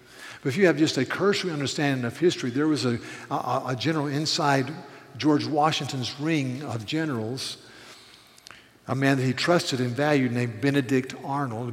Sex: male